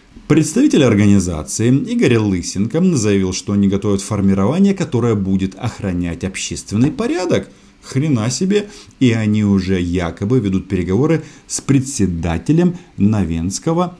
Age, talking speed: 50-69, 105 wpm